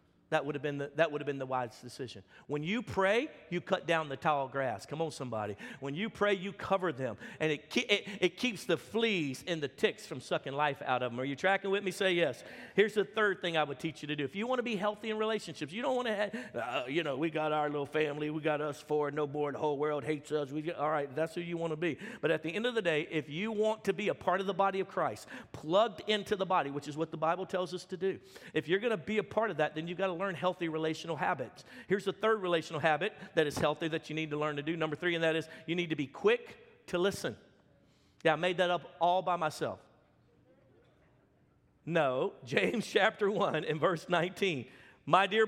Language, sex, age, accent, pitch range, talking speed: English, male, 50-69, American, 150-200 Hz, 260 wpm